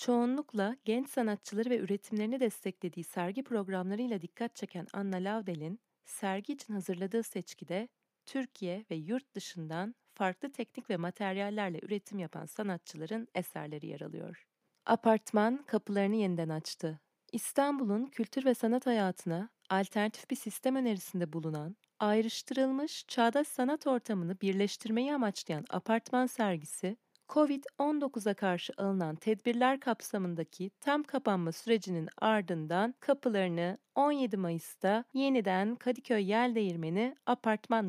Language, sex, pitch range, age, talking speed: Turkish, female, 185-245 Hz, 30-49, 110 wpm